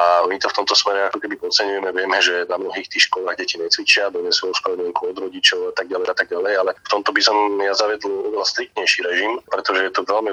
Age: 30-49